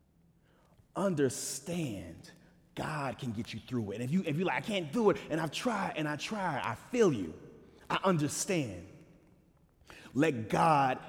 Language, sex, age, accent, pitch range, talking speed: English, male, 30-49, American, 110-150 Hz, 155 wpm